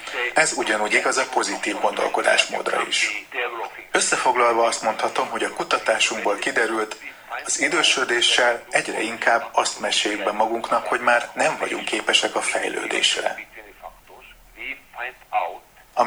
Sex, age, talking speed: male, 30-49, 110 wpm